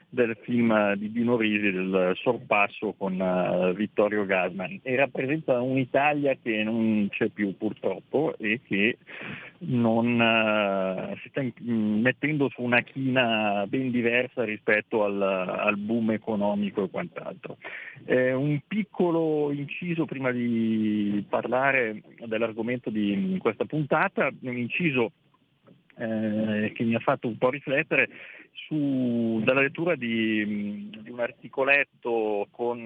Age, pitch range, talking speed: 40-59, 105-140 Hz, 120 wpm